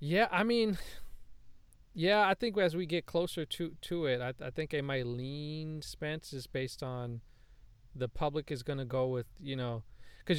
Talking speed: 190 wpm